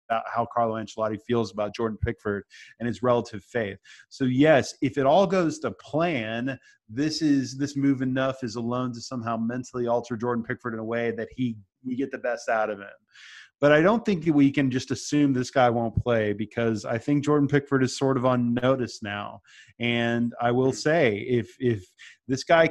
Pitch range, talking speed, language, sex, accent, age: 115-140 Hz, 205 wpm, English, male, American, 30-49